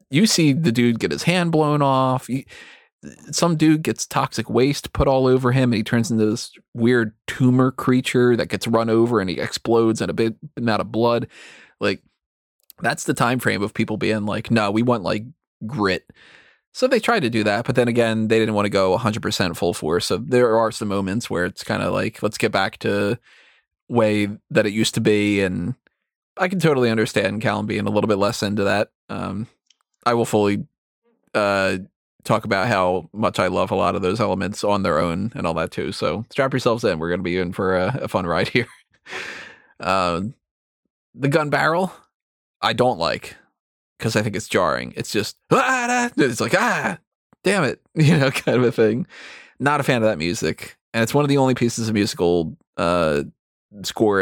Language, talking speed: English, 205 wpm